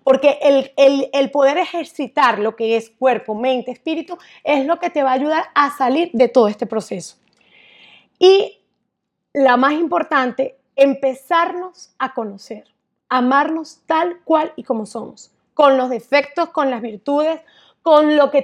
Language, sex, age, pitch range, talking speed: Spanish, female, 30-49, 250-310 Hz, 150 wpm